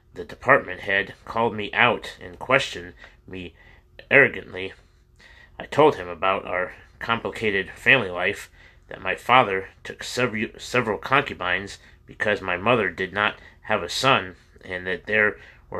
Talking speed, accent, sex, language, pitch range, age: 135 wpm, American, male, English, 90-115 Hz, 30-49